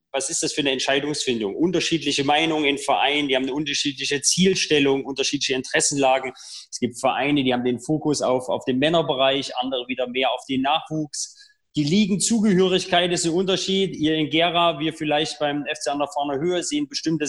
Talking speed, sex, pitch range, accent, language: 185 wpm, male, 135-175 Hz, German, German